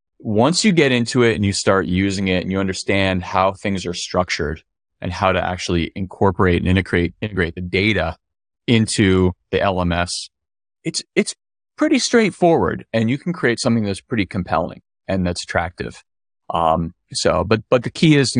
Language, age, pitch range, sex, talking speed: English, 30-49, 85-105 Hz, male, 175 wpm